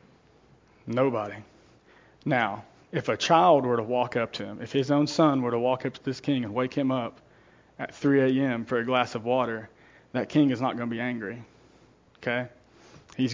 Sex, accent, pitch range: male, American, 120-140 Hz